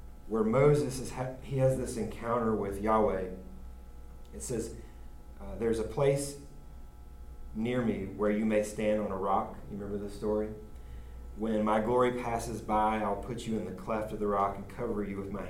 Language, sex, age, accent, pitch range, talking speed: English, male, 30-49, American, 90-110 Hz, 180 wpm